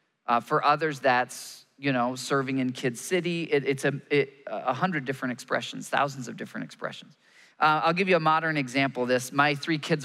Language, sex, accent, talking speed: English, male, American, 190 wpm